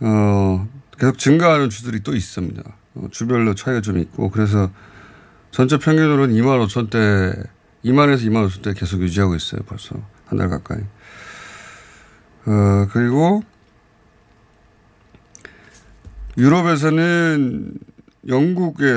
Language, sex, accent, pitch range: Korean, male, native, 95-125 Hz